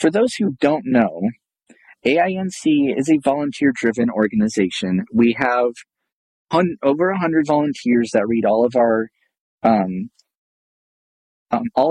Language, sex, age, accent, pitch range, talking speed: English, male, 30-49, American, 110-145 Hz, 125 wpm